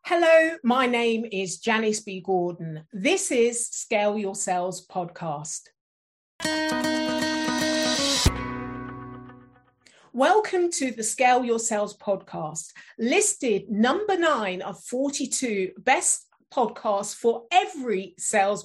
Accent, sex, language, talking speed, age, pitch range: British, female, English, 95 wpm, 40-59, 190-290 Hz